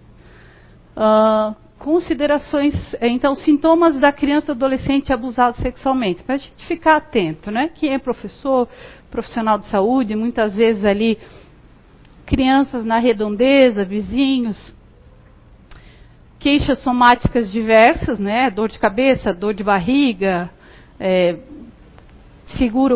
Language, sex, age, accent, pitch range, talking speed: Portuguese, female, 50-69, Brazilian, 220-270 Hz, 105 wpm